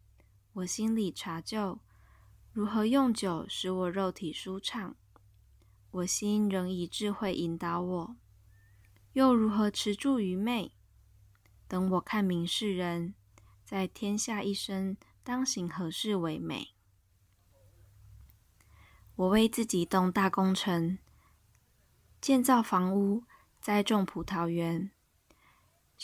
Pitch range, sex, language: 170-210 Hz, female, Chinese